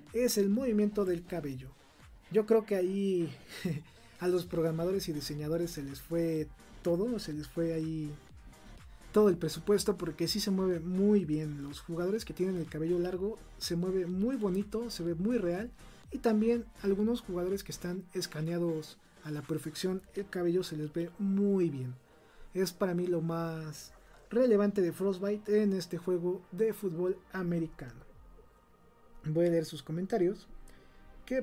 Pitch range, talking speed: 160-200 Hz, 160 wpm